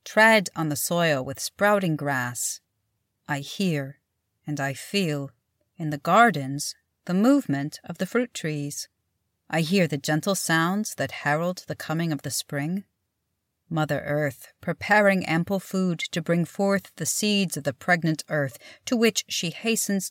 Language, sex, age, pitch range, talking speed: English, female, 40-59, 140-195 Hz, 150 wpm